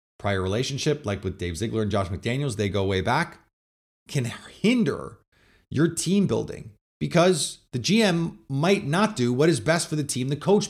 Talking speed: 180 wpm